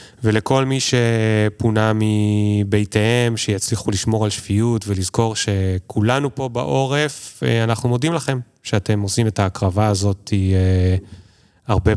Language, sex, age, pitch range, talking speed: Hebrew, male, 20-39, 100-125 Hz, 105 wpm